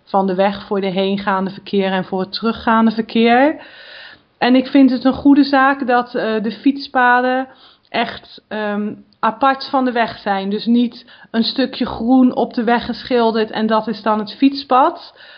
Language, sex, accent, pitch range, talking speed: Dutch, female, Dutch, 205-255 Hz, 170 wpm